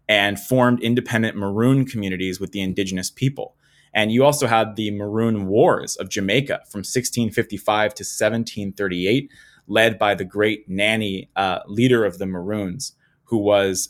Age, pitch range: 20-39, 100-120 Hz